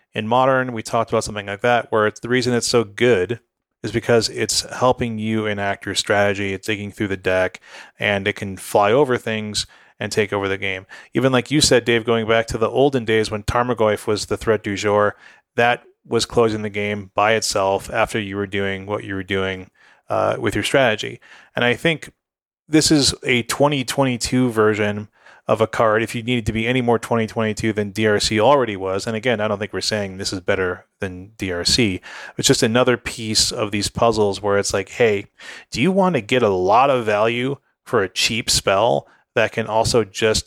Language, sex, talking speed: English, male, 210 wpm